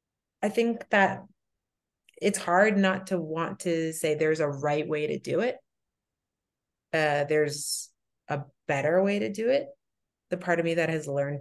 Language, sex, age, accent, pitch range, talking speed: English, female, 30-49, American, 150-195 Hz, 170 wpm